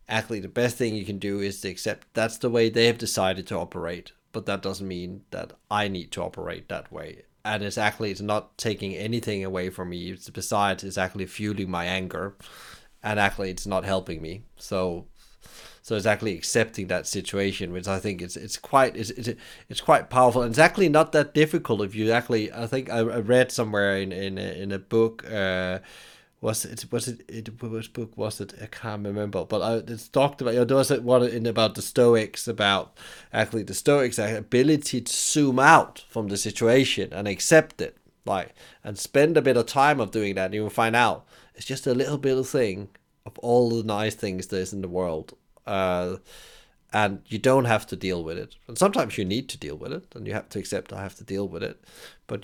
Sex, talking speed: male, 215 wpm